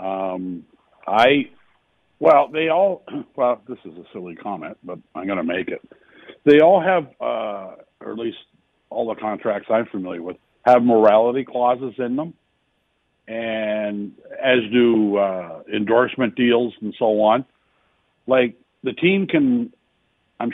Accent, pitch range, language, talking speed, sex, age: American, 105-140 Hz, English, 140 wpm, male, 60-79